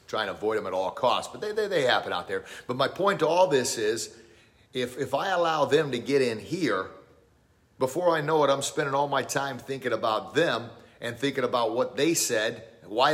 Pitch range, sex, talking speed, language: 115-145 Hz, male, 225 wpm, English